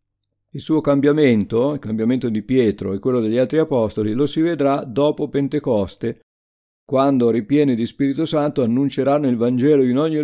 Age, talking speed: 50-69, 160 wpm